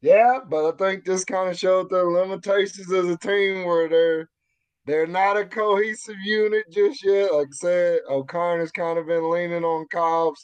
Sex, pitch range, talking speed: male, 150-215 Hz, 190 wpm